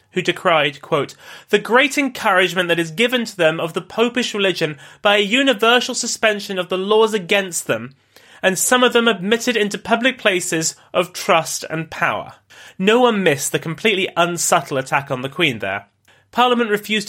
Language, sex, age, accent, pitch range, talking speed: English, male, 30-49, British, 140-210 Hz, 170 wpm